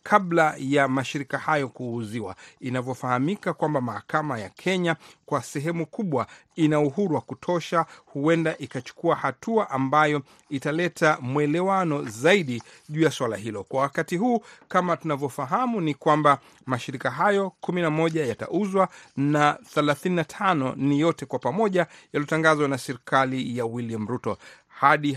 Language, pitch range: Swahili, 135-170 Hz